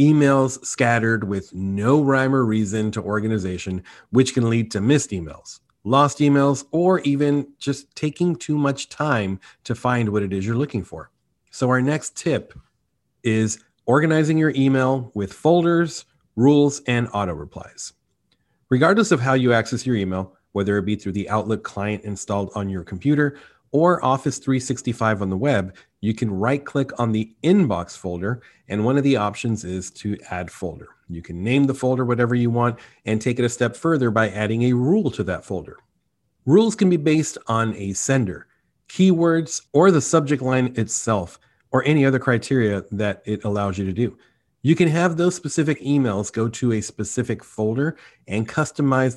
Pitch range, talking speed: 105-140 Hz, 175 wpm